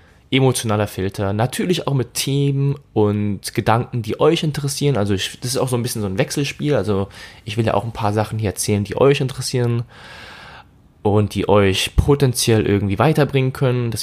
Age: 10-29